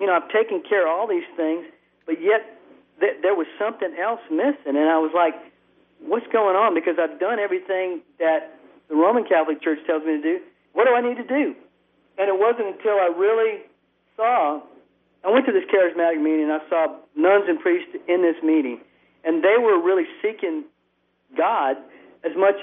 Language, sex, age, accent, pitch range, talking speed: English, male, 50-69, American, 160-215 Hz, 190 wpm